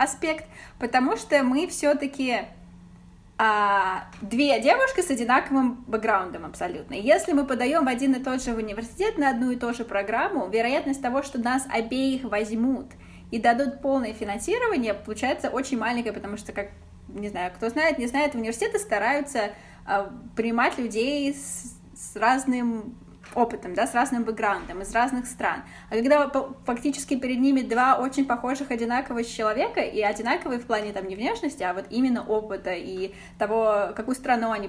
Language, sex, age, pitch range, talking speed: Russian, female, 20-39, 215-265 Hz, 155 wpm